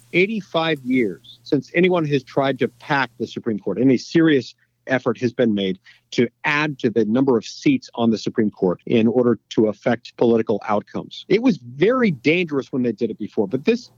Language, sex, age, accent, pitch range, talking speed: English, male, 50-69, American, 115-165 Hz, 195 wpm